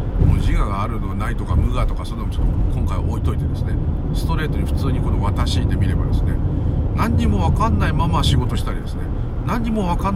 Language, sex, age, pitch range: Japanese, male, 50-69, 80-105 Hz